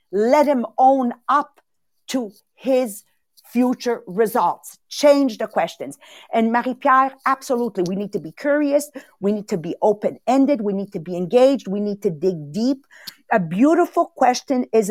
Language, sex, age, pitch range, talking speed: English, female, 50-69, 225-310 Hz, 155 wpm